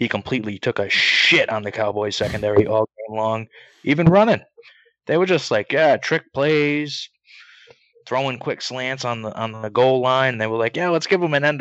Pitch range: 100-130 Hz